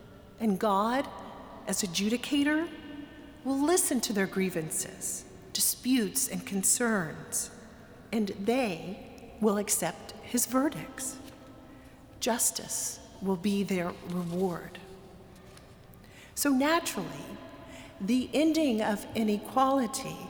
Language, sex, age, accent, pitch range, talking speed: English, female, 40-59, American, 205-280 Hz, 85 wpm